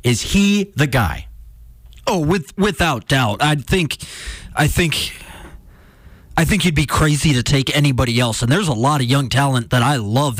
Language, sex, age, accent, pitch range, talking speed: English, male, 20-39, American, 125-160 Hz, 180 wpm